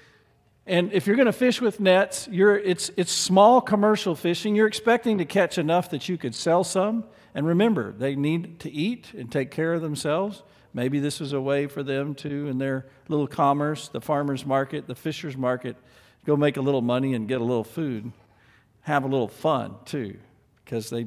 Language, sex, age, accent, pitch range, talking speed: English, male, 50-69, American, 125-165 Hz, 195 wpm